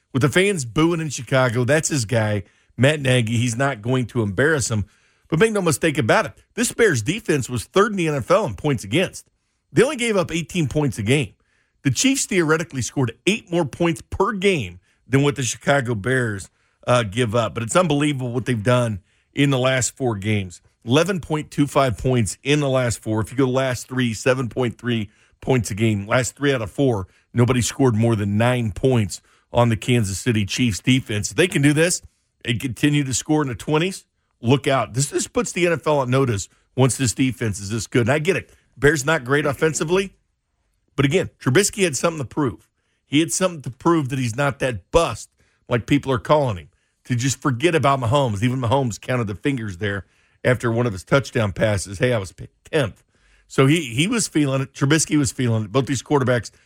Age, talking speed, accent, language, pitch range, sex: 50-69, 205 wpm, American, English, 115-150 Hz, male